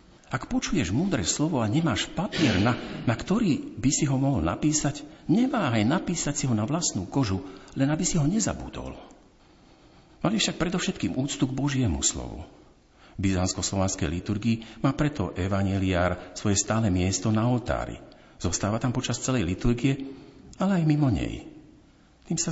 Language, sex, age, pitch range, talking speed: Slovak, male, 50-69, 90-155 Hz, 150 wpm